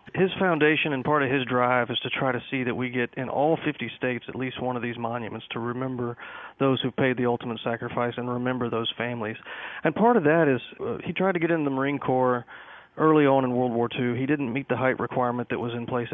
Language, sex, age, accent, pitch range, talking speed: English, male, 40-59, American, 120-140 Hz, 250 wpm